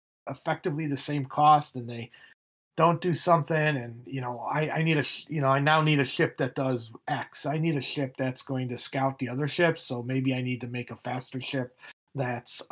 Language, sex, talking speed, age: English, male, 220 wpm, 40-59